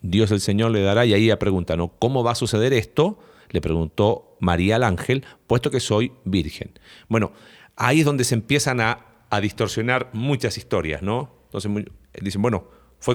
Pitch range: 105-130 Hz